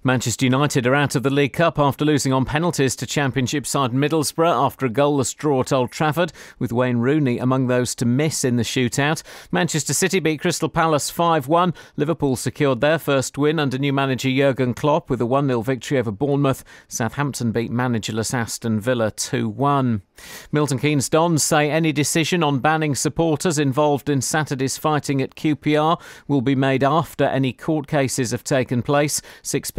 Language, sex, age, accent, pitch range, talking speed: English, male, 40-59, British, 125-150 Hz, 175 wpm